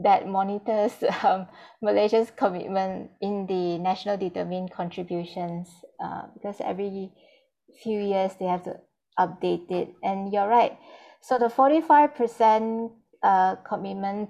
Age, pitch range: 20-39, 175-205 Hz